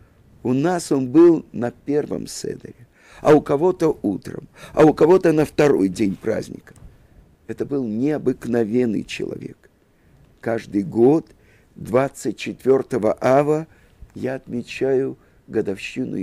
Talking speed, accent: 105 wpm, native